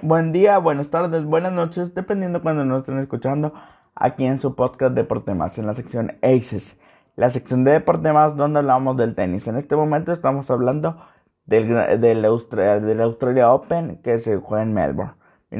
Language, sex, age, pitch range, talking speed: Spanish, male, 20-39, 120-150 Hz, 180 wpm